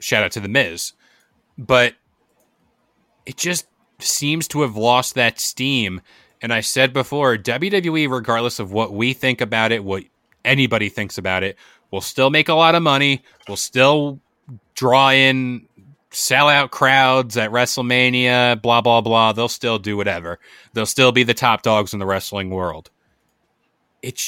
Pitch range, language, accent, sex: 105-130 Hz, English, American, male